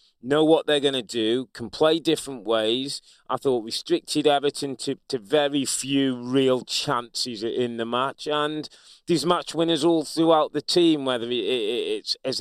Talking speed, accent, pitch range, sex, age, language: 160 wpm, British, 120-150 Hz, male, 30-49, English